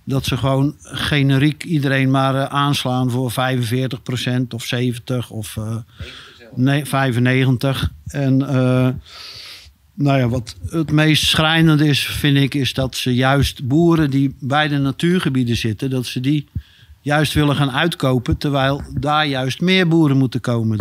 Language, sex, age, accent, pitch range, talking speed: Dutch, male, 50-69, Dutch, 120-150 Hz, 145 wpm